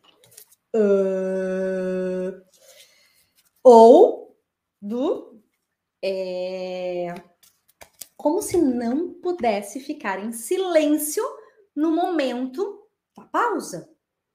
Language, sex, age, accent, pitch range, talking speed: Portuguese, female, 20-39, Brazilian, 205-310 Hz, 65 wpm